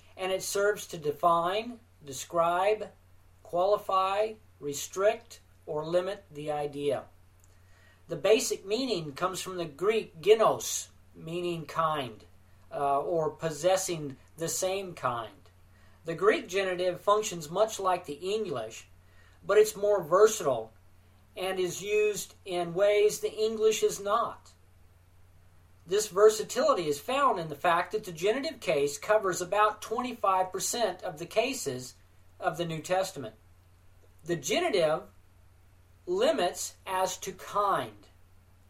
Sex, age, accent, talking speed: male, 40-59, American, 120 wpm